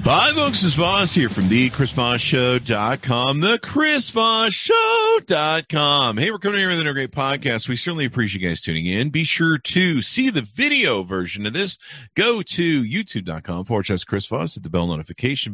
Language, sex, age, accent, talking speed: English, male, 40-59, American, 180 wpm